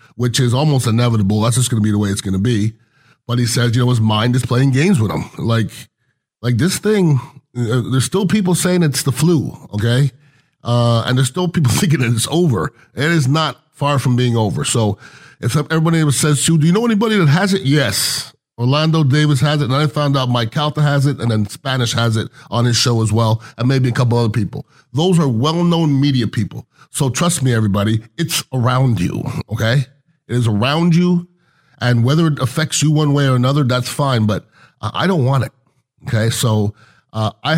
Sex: male